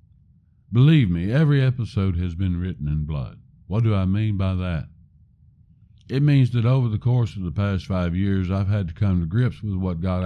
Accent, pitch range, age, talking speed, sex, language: American, 85-115 Hz, 60-79, 205 wpm, male, English